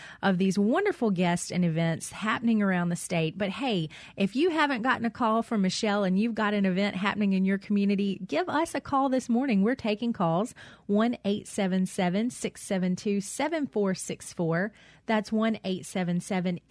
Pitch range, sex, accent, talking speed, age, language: 180-225 Hz, female, American, 145 wpm, 30-49, English